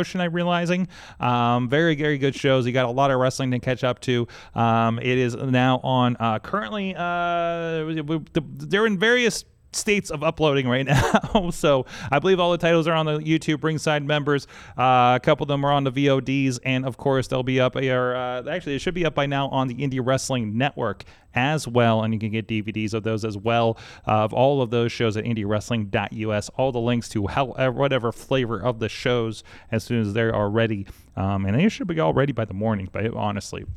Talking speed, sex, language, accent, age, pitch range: 210 wpm, male, English, American, 30-49, 110-145 Hz